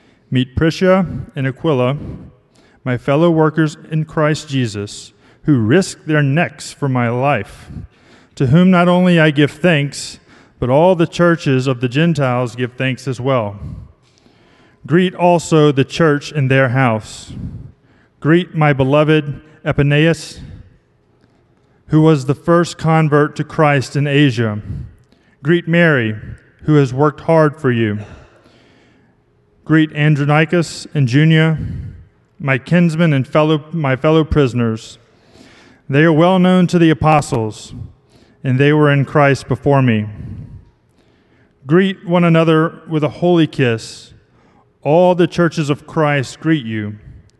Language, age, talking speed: English, 30-49, 130 wpm